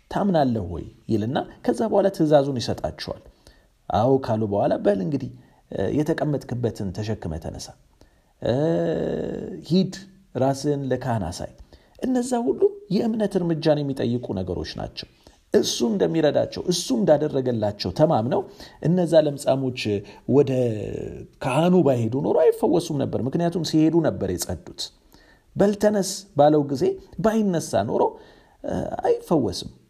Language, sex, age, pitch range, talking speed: Amharic, male, 40-59, 110-170 Hz, 100 wpm